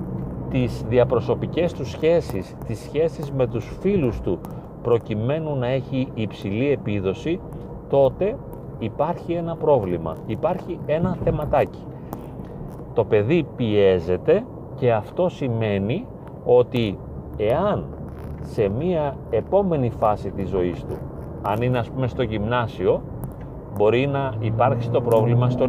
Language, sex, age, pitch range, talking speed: Greek, male, 40-59, 100-140 Hz, 115 wpm